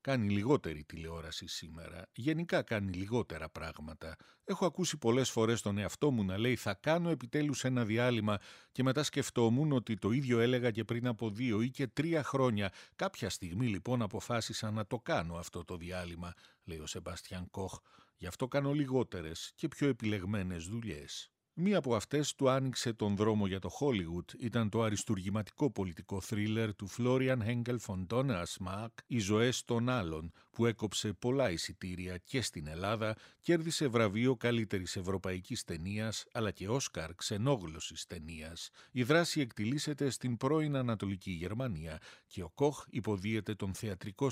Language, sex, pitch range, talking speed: Greek, male, 95-130 Hz, 155 wpm